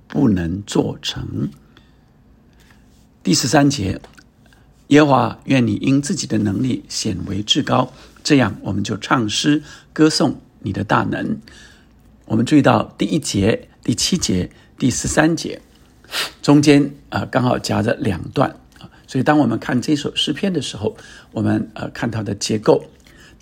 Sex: male